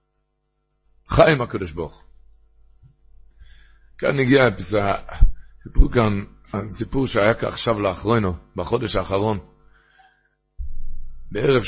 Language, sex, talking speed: Hebrew, male, 65 wpm